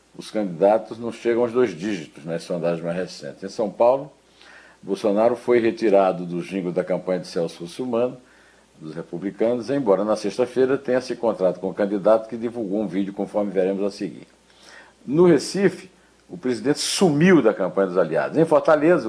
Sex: male